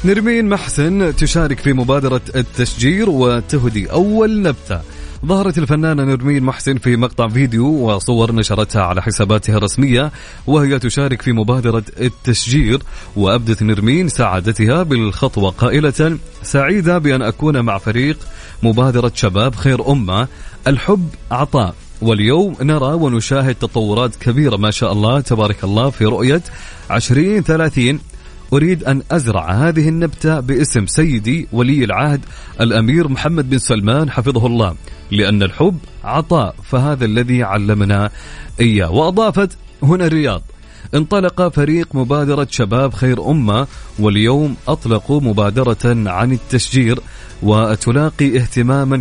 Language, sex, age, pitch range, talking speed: Arabic, male, 30-49, 110-150 Hz, 115 wpm